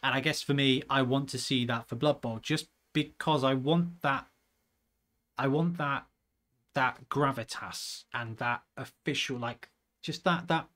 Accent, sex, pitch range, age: British, male, 120-155 Hz, 30-49